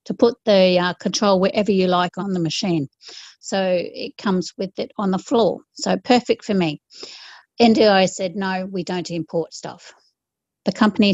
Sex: female